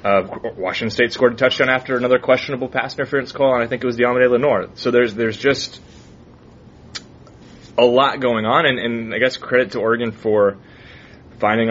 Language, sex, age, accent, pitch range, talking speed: English, male, 20-39, American, 100-115 Hz, 185 wpm